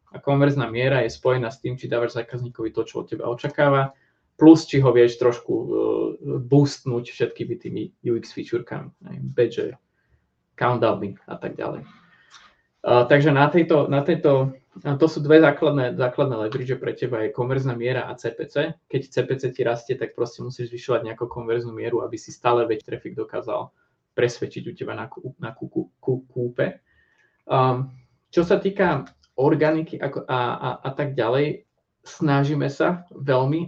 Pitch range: 120-145 Hz